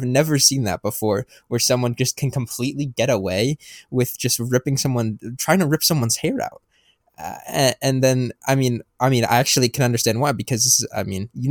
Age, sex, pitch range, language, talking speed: 20-39, male, 115-140 Hz, English, 200 wpm